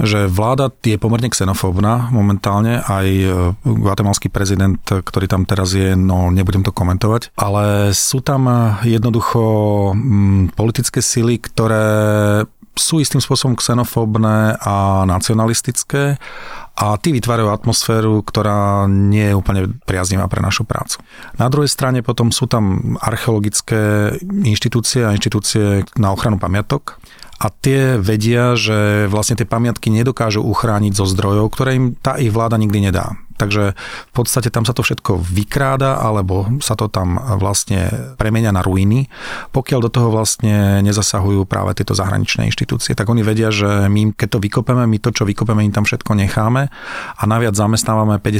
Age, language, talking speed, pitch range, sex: 30-49, Slovak, 145 wpm, 100-120 Hz, male